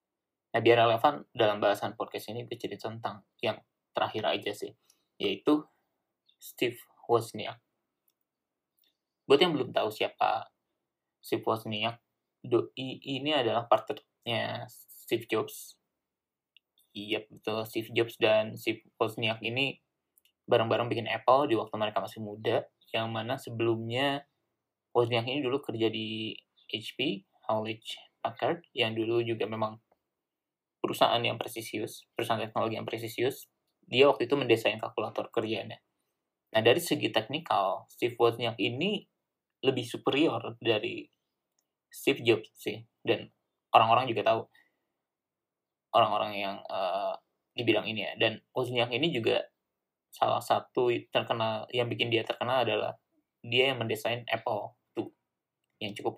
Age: 20-39